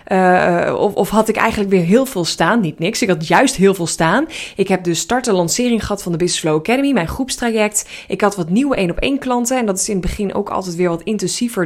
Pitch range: 185-235 Hz